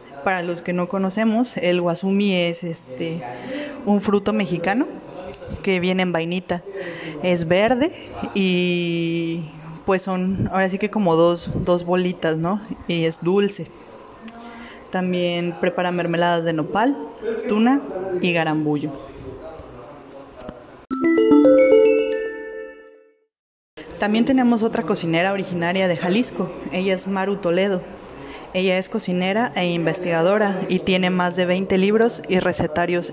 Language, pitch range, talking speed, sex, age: English, 170-200 Hz, 115 wpm, female, 20-39